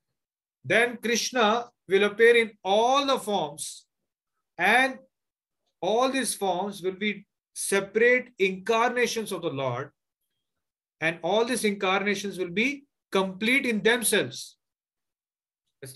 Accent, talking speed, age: Indian, 110 wpm, 30-49